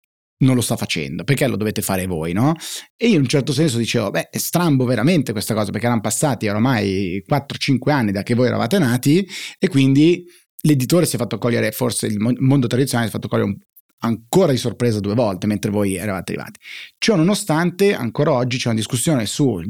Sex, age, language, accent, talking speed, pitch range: male, 30-49, Italian, native, 205 wpm, 105-140 Hz